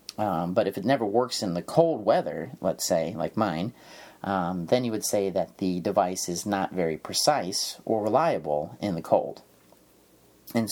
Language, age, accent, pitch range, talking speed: English, 30-49, American, 95-120 Hz, 180 wpm